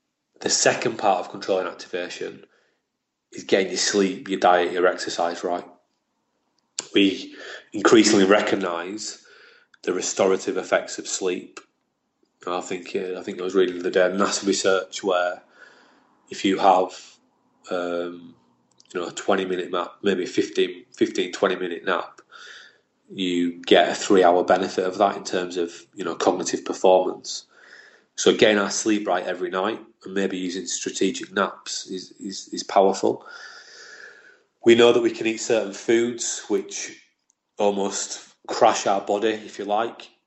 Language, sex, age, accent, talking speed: English, male, 30-49, British, 145 wpm